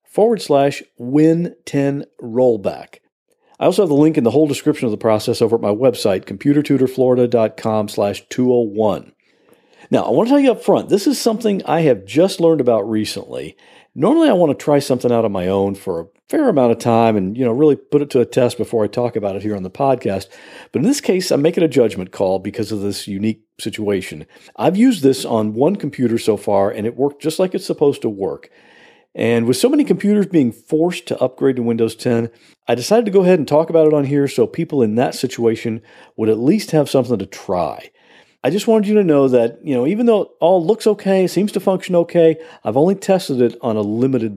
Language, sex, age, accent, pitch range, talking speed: English, male, 50-69, American, 110-165 Hz, 225 wpm